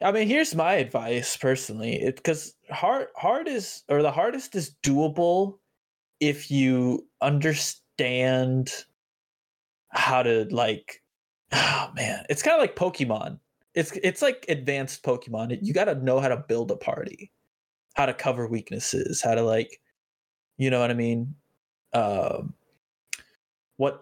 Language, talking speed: English, 135 wpm